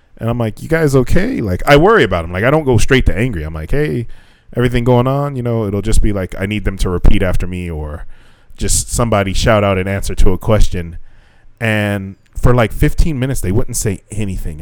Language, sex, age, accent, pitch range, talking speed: English, male, 20-39, American, 90-125 Hz, 230 wpm